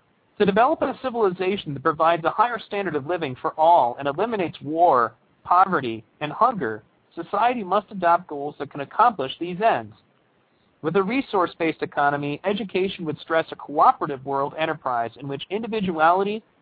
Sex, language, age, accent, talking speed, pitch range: male, English, 40-59, American, 150 wpm, 150-200 Hz